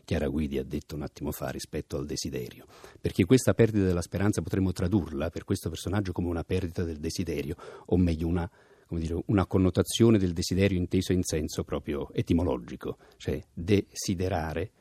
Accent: native